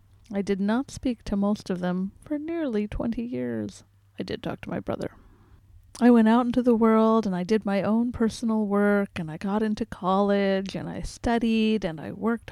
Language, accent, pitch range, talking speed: English, American, 170-240 Hz, 200 wpm